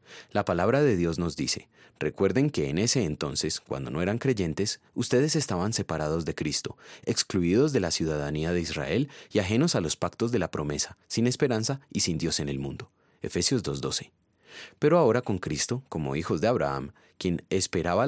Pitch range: 85-125 Hz